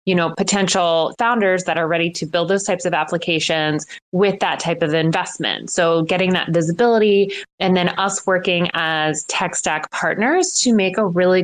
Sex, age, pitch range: female, 20-39, 160-185 Hz